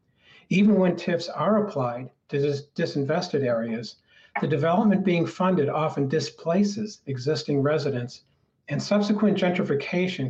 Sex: male